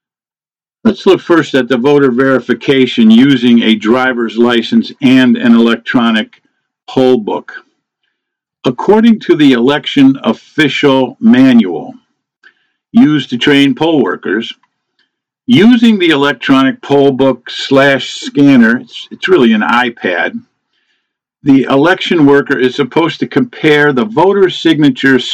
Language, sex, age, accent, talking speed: English, male, 50-69, American, 115 wpm